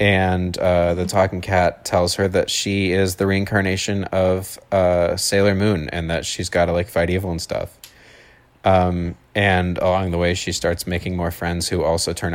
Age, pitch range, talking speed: 20-39, 85-100 Hz, 190 wpm